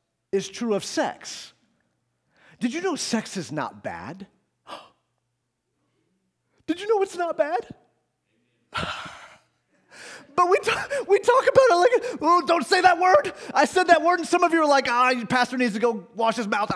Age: 30-49